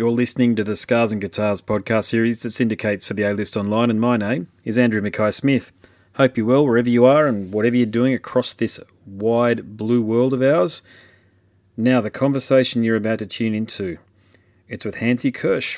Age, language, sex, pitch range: 30-49, English, male, 100-120 Hz